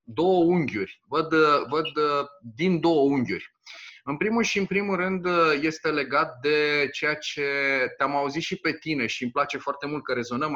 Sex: male